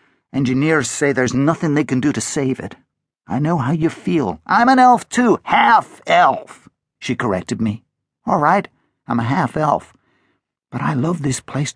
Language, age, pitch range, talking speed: English, 50-69, 125-170 Hz, 170 wpm